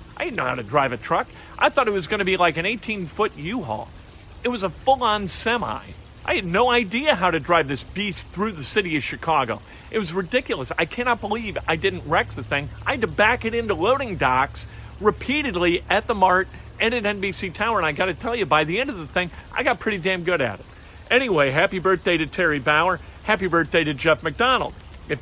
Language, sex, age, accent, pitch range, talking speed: English, male, 50-69, American, 155-210 Hz, 230 wpm